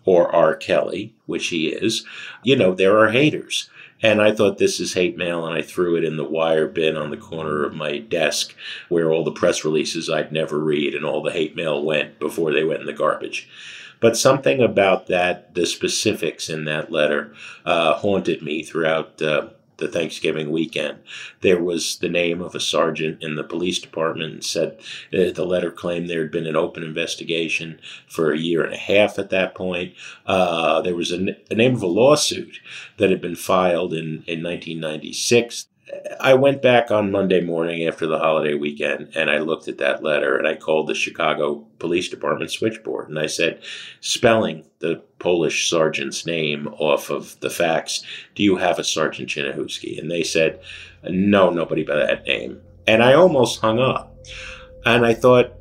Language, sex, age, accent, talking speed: English, male, 50-69, American, 190 wpm